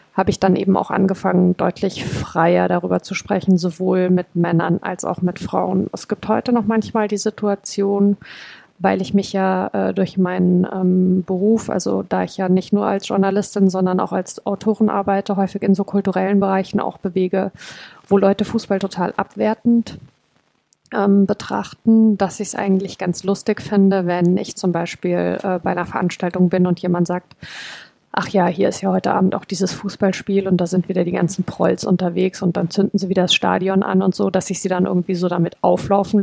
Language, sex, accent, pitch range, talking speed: German, female, German, 180-200 Hz, 190 wpm